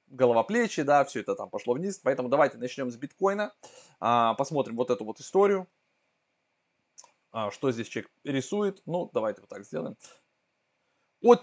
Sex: male